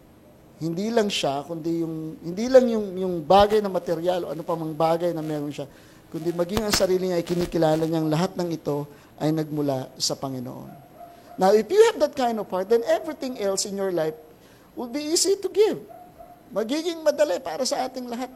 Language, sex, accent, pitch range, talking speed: English, male, Filipino, 165-235 Hz, 195 wpm